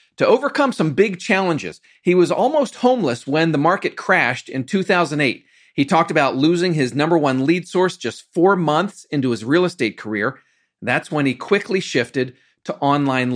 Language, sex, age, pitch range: English, male, 40-59, 135-190 Hz